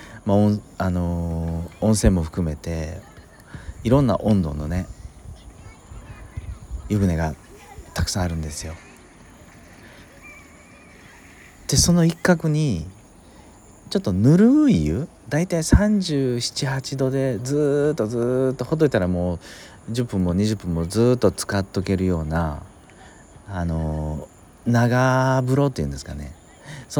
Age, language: 40-59, Japanese